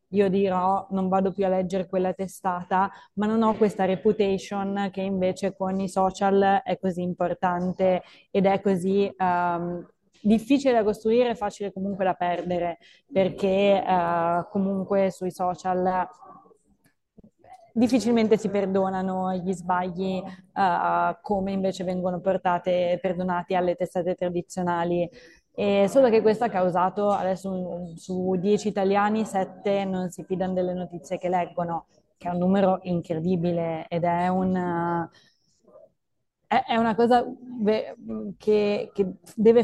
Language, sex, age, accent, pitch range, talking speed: Italian, female, 20-39, native, 175-200 Hz, 125 wpm